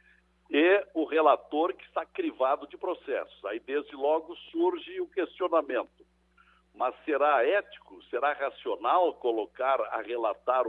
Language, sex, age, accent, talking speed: Portuguese, male, 60-79, Brazilian, 125 wpm